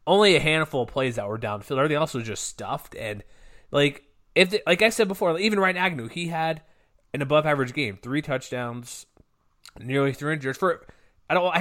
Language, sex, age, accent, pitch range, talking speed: English, male, 20-39, American, 115-145 Hz, 200 wpm